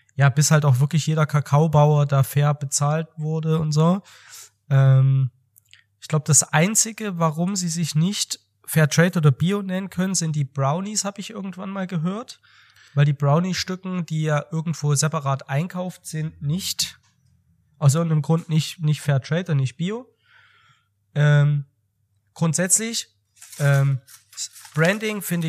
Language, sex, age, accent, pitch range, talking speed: German, male, 20-39, German, 135-170 Hz, 145 wpm